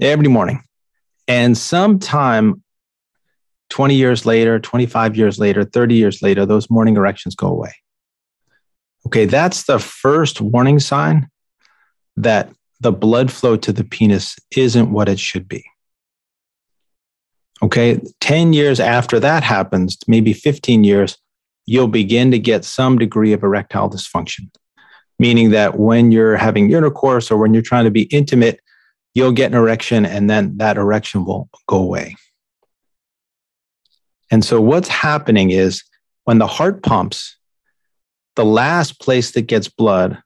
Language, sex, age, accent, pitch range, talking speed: English, male, 40-59, American, 110-135 Hz, 140 wpm